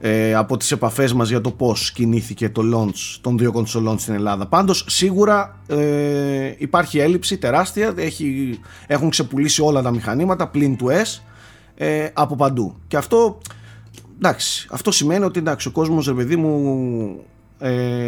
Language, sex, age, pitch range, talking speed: Greek, male, 30-49, 110-155 Hz, 145 wpm